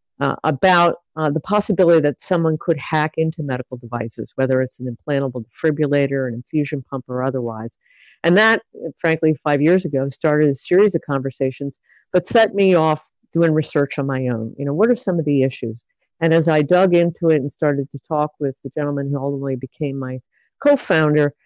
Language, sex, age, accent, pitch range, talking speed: English, female, 50-69, American, 135-175 Hz, 190 wpm